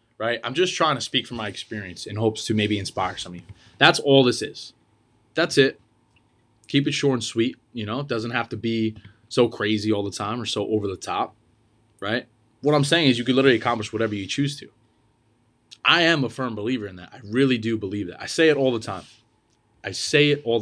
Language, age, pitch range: English, 20-39, 110-140 Hz